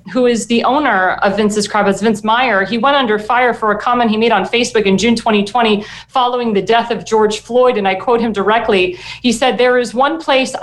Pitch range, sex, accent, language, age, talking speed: 210-250 Hz, female, American, English, 40-59, 225 wpm